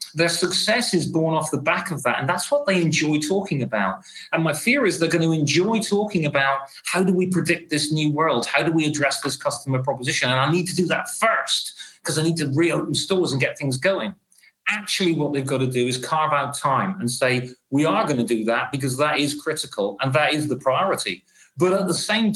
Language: English